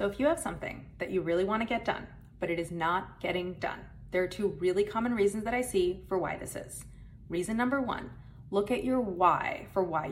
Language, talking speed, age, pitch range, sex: English, 235 wpm, 30-49, 190-260 Hz, female